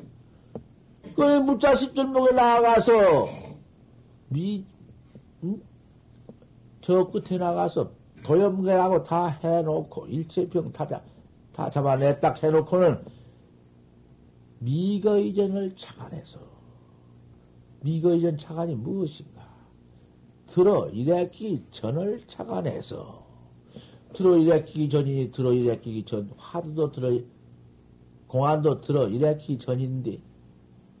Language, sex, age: Korean, male, 60-79